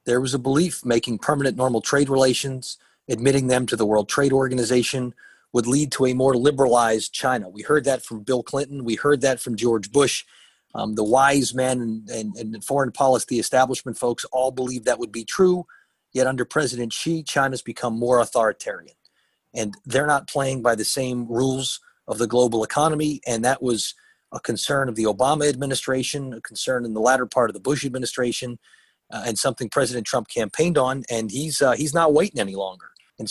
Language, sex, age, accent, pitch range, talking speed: English, male, 30-49, American, 115-140 Hz, 190 wpm